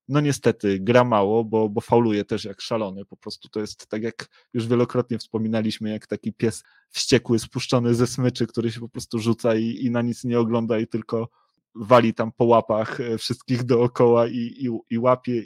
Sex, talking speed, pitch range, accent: male, 190 wpm, 110-120 Hz, native